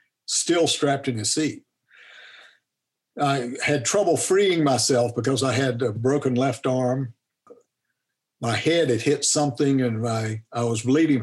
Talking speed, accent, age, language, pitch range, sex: 145 wpm, American, 60-79, English, 115-140 Hz, male